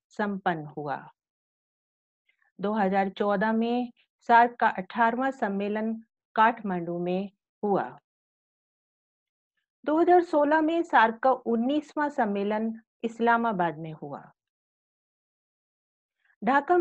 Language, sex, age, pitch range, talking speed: English, female, 50-69, 195-245 Hz, 75 wpm